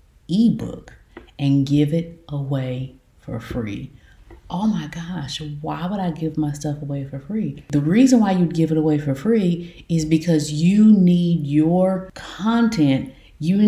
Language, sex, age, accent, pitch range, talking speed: English, female, 30-49, American, 155-195 Hz, 155 wpm